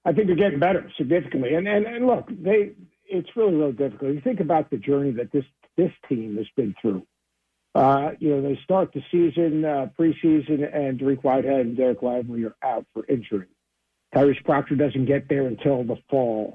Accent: American